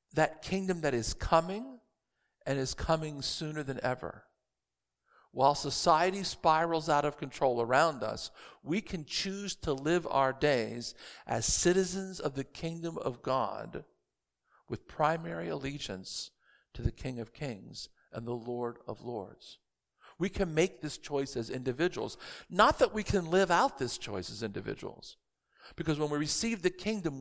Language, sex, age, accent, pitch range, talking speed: English, male, 50-69, American, 135-185 Hz, 150 wpm